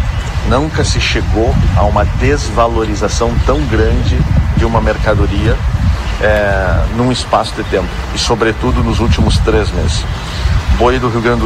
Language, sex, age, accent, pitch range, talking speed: Portuguese, male, 50-69, Brazilian, 85-110 Hz, 140 wpm